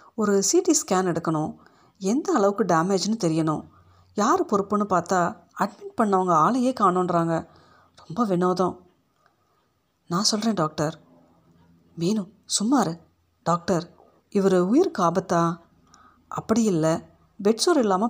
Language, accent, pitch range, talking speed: Tamil, native, 165-210 Hz, 105 wpm